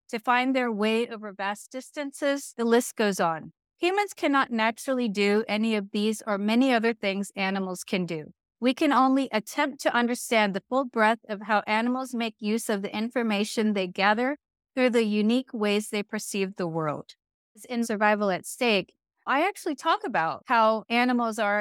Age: 30-49